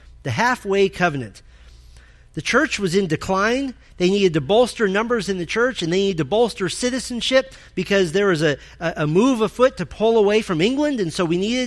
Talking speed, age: 200 wpm, 40-59